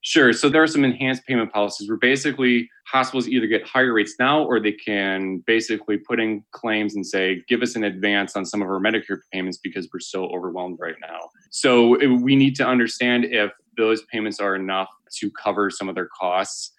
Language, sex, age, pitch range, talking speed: English, male, 20-39, 100-120 Hz, 205 wpm